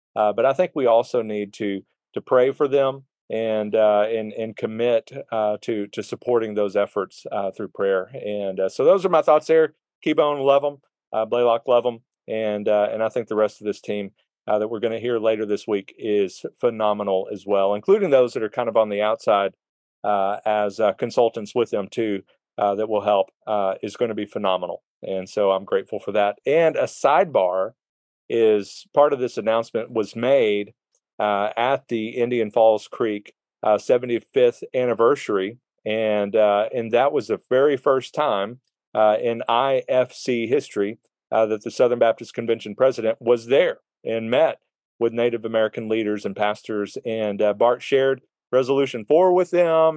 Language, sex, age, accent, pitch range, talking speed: English, male, 40-59, American, 105-130 Hz, 185 wpm